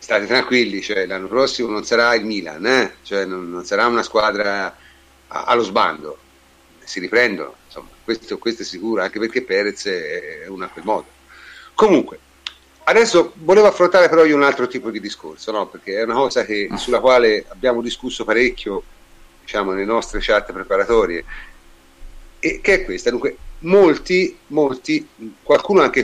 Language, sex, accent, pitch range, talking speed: Italian, male, native, 110-180 Hz, 155 wpm